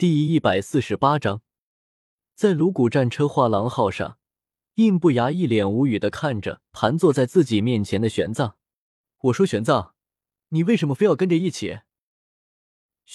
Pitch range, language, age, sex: 105-165 Hz, Chinese, 20-39, male